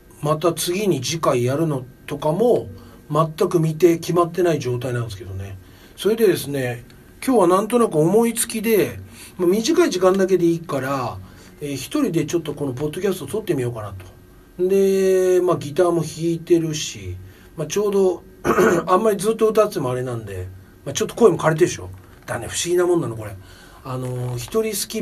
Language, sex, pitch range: Japanese, male, 120-195 Hz